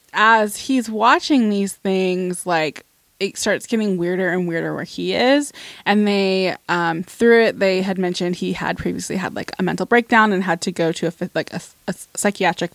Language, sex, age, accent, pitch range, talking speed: English, female, 20-39, American, 180-220 Hz, 195 wpm